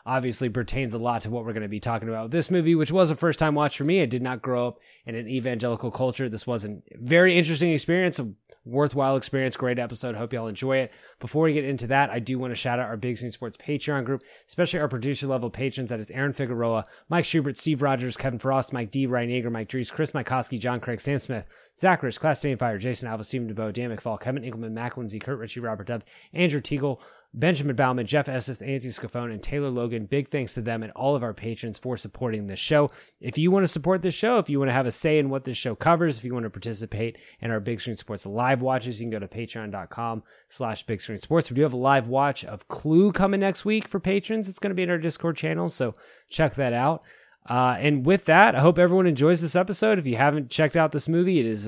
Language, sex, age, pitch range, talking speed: English, male, 20-39, 120-155 Hz, 245 wpm